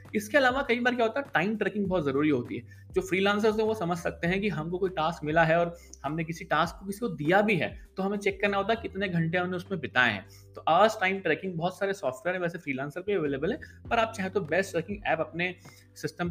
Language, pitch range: Hindi, 130-205 Hz